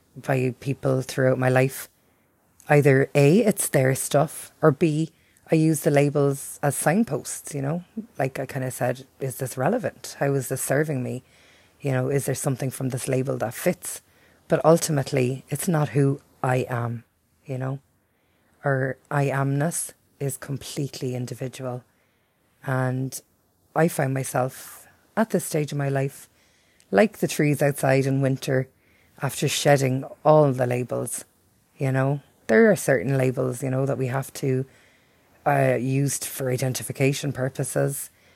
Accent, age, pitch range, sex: Irish, 30-49, 130-145 Hz, female